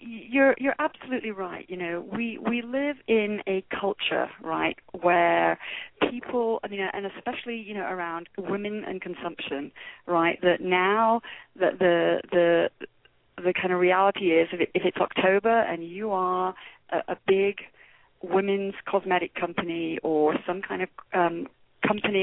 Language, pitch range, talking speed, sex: English, 175-220 Hz, 150 wpm, female